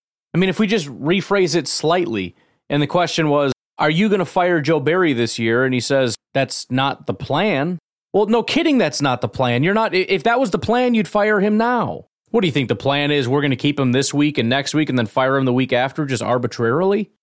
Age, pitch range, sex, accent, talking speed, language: 30-49, 135-175 Hz, male, American, 250 wpm, English